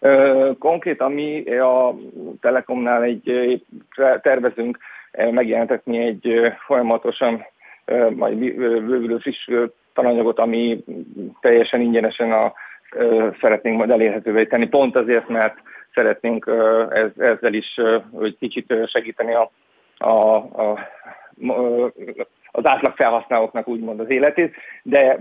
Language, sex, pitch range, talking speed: Hungarian, male, 115-130 Hz, 100 wpm